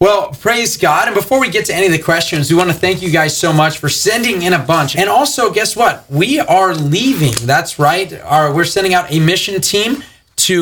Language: English